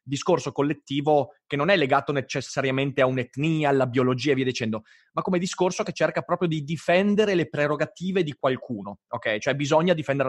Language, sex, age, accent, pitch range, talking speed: Italian, male, 20-39, native, 130-180 Hz, 175 wpm